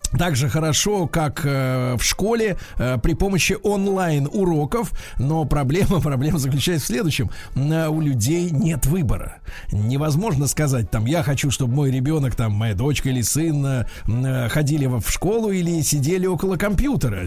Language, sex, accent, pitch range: Russian, male, native, 130-190 Hz